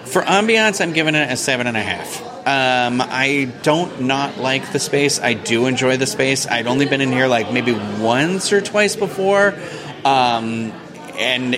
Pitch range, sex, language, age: 110-145 Hz, male, English, 30-49